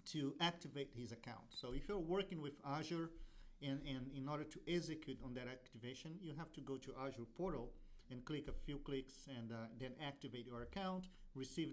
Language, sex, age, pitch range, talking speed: English, male, 40-59, 125-155 Hz, 195 wpm